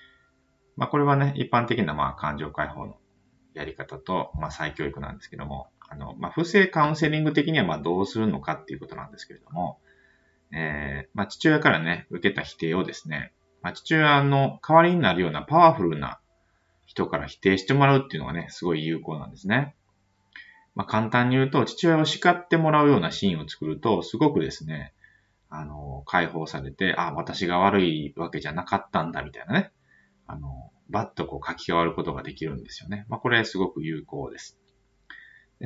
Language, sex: Japanese, male